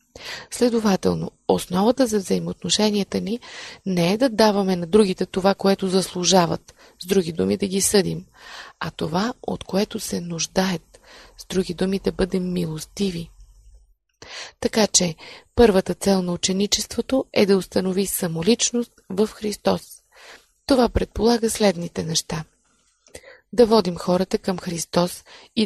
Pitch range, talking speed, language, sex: 180-230 Hz, 125 wpm, Bulgarian, female